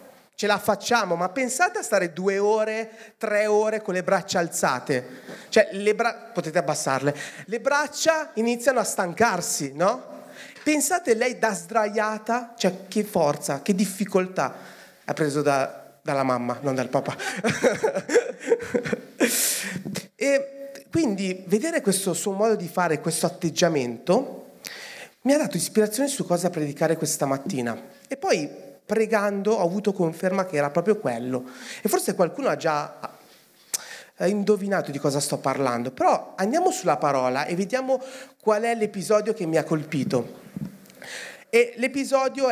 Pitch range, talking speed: 170-235 Hz, 135 wpm